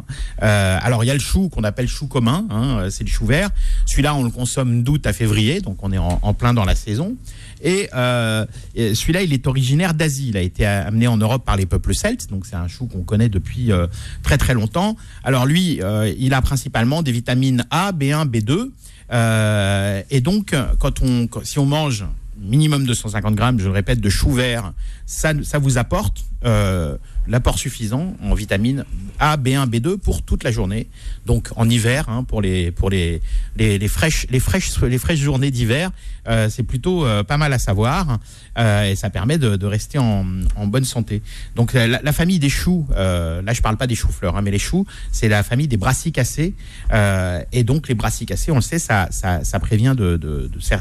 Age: 50-69